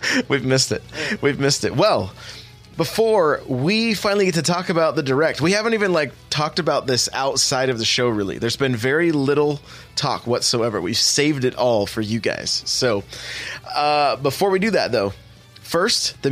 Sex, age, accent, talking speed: male, 20-39, American, 185 wpm